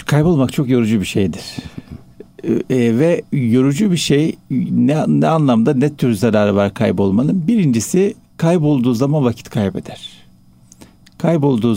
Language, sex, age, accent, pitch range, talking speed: Turkish, male, 60-79, native, 115-160 Hz, 120 wpm